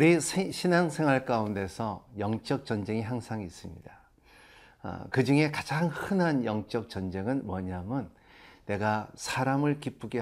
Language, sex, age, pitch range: Korean, male, 50-69, 110-145 Hz